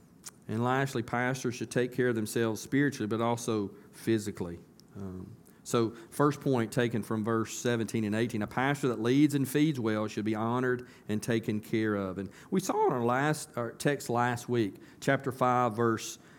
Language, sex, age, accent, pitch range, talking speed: English, male, 40-59, American, 115-140 Hz, 175 wpm